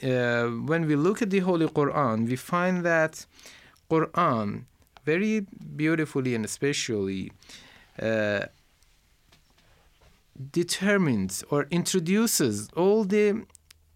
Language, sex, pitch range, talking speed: Persian, male, 110-160 Hz, 95 wpm